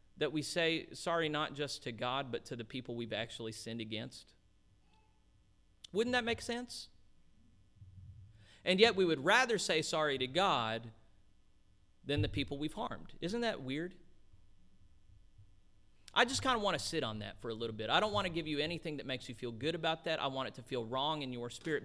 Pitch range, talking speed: 110-160 Hz, 200 wpm